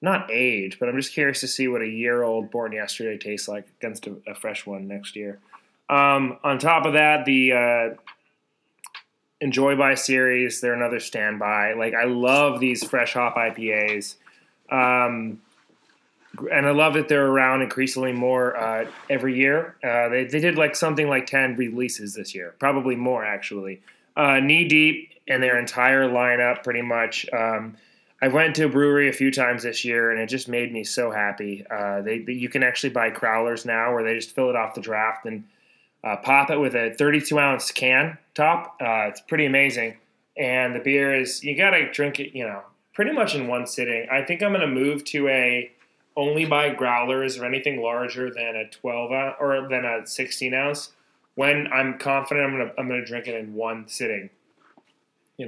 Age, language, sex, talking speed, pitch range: 20-39, English, male, 190 wpm, 115-140 Hz